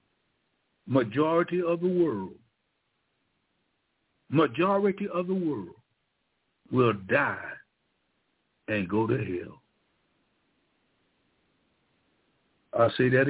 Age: 60-79